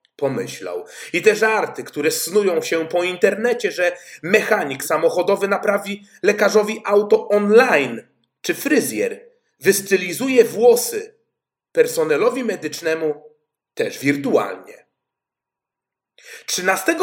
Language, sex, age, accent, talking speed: Polish, male, 40-59, native, 90 wpm